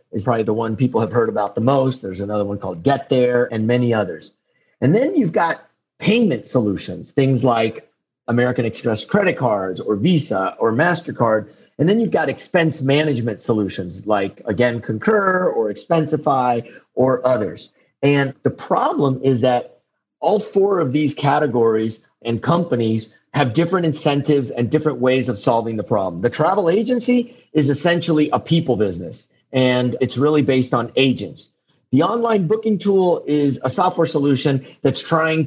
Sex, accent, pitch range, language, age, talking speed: male, American, 120-160 Hz, English, 40-59, 160 wpm